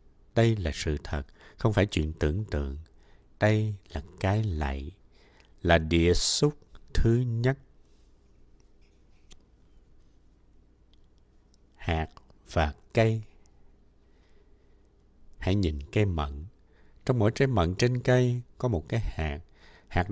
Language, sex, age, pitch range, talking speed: Vietnamese, male, 60-79, 80-115 Hz, 105 wpm